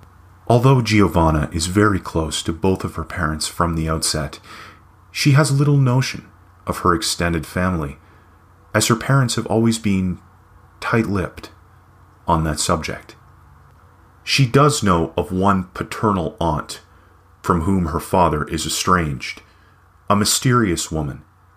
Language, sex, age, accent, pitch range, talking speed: English, male, 30-49, American, 85-105 Hz, 130 wpm